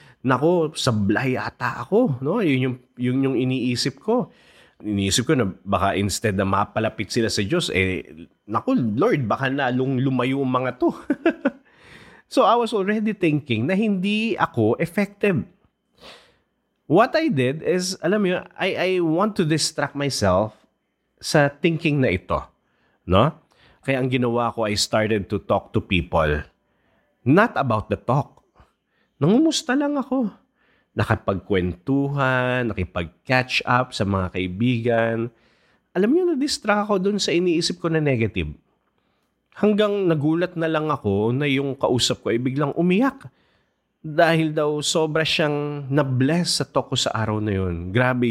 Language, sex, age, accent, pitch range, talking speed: English, male, 30-49, Filipino, 105-165 Hz, 140 wpm